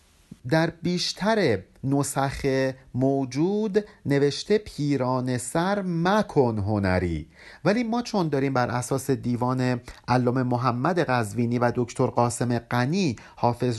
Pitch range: 120-185 Hz